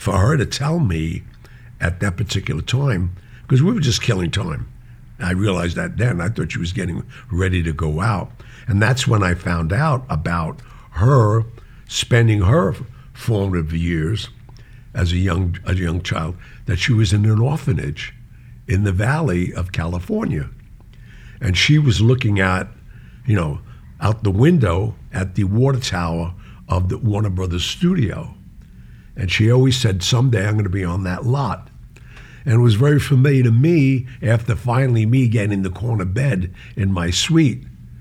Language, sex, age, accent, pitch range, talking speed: English, male, 60-79, American, 90-125 Hz, 165 wpm